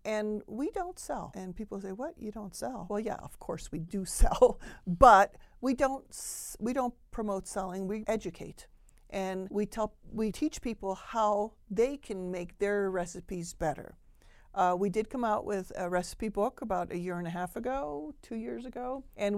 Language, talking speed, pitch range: English, 185 wpm, 180-220 Hz